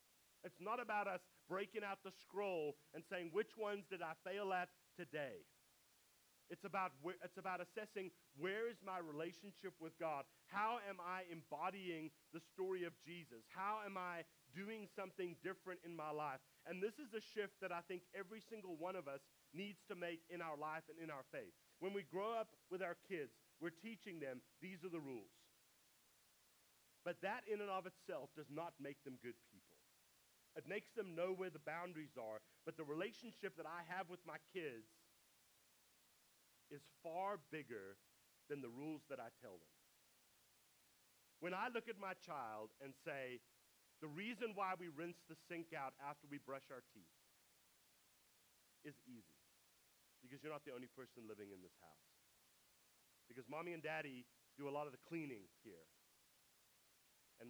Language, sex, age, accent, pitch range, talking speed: English, male, 40-59, American, 140-190 Hz, 170 wpm